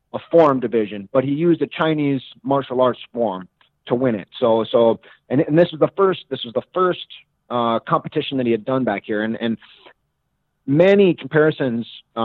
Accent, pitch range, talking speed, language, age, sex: American, 115-145 Hz, 190 wpm, English, 30-49, male